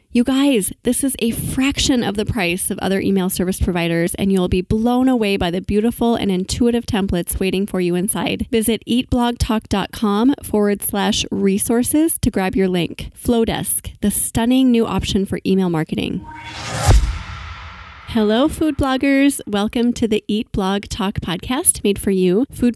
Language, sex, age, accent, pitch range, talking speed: English, female, 20-39, American, 190-235 Hz, 160 wpm